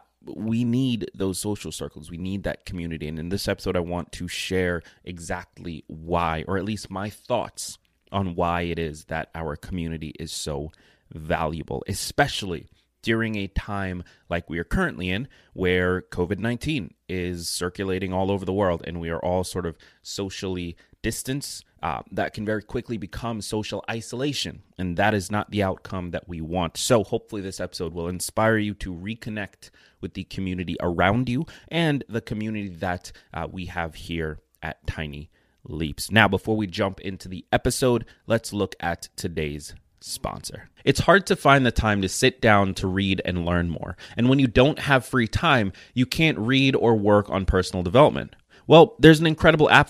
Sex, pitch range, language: male, 90-120 Hz, English